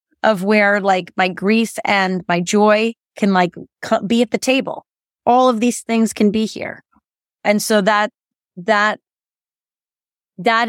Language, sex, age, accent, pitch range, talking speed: English, female, 30-49, American, 185-230 Hz, 150 wpm